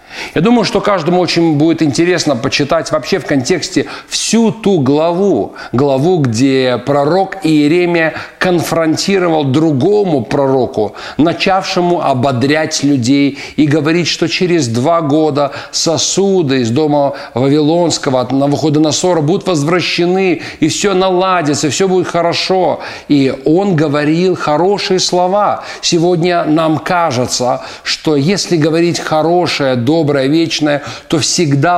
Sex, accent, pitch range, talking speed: male, native, 140-175 Hz, 115 wpm